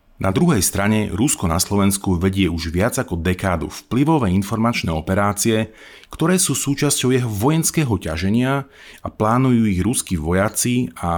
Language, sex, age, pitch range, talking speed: Slovak, male, 30-49, 90-120 Hz, 140 wpm